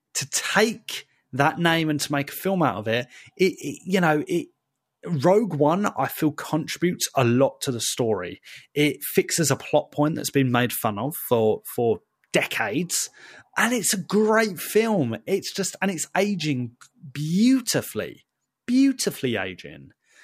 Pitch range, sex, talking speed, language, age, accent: 140-190 Hz, male, 155 wpm, English, 30-49, British